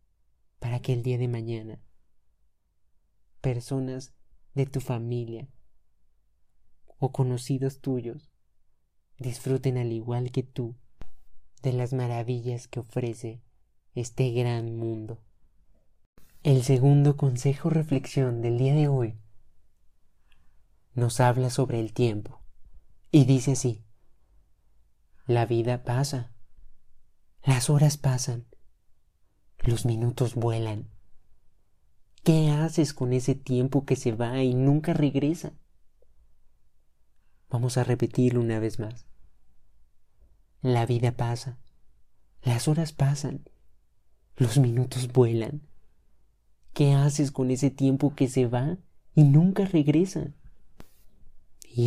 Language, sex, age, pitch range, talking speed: Spanish, male, 30-49, 105-135 Hz, 105 wpm